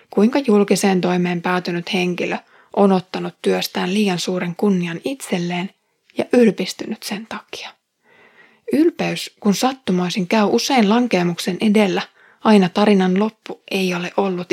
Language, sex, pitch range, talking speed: Finnish, female, 185-220 Hz, 120 wpm